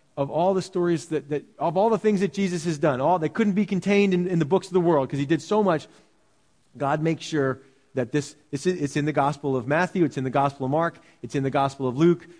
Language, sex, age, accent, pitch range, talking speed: English, male, 40-59, American, 140-195 Hz, 265 wpm